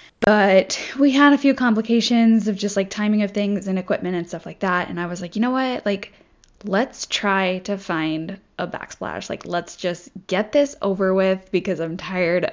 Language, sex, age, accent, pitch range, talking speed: English, female, 10-29, American, 170-215 Hz, 200 wpm